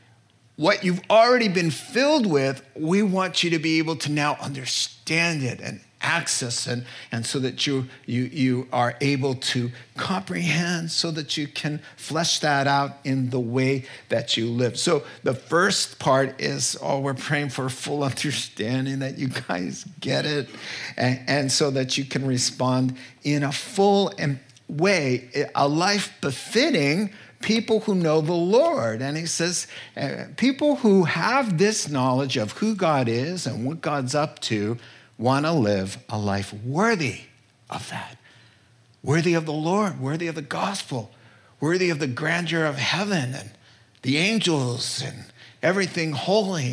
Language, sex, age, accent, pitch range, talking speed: English, male, 50-69, American, 125-165 Hz, 160 wpm